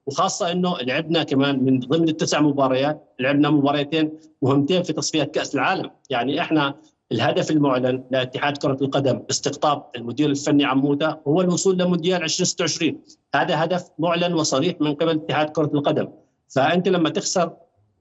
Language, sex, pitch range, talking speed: Arabic, male, 135-155 Hz, 145 wpm